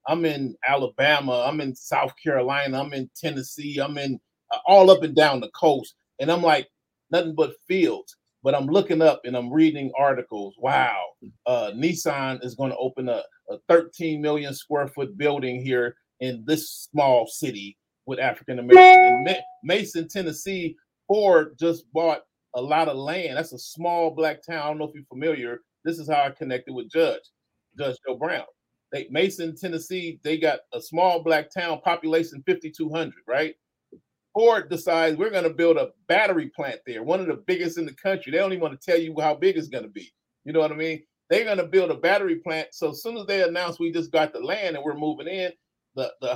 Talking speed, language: 200 wpm, English